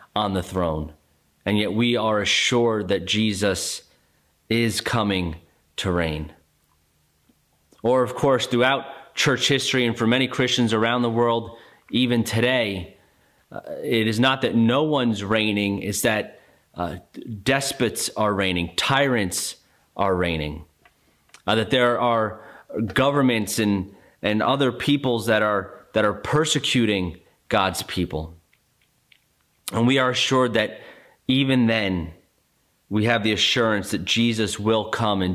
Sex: male